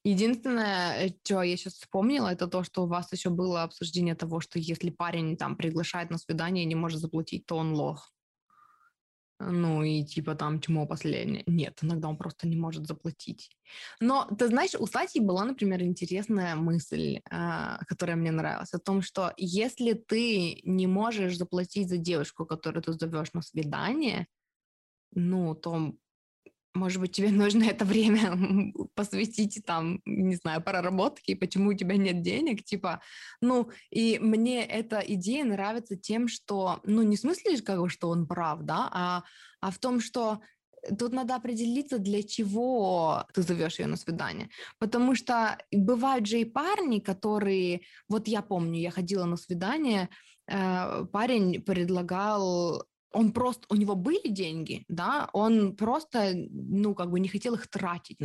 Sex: female